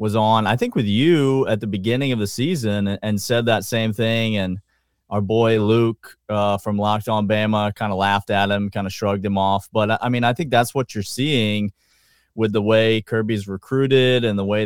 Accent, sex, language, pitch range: American, male, English, 105-125 Hz